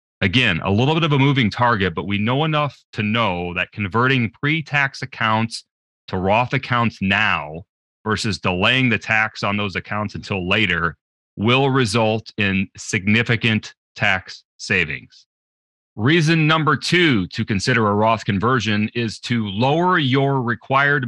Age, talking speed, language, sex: 30-49, 140 wpm, English, male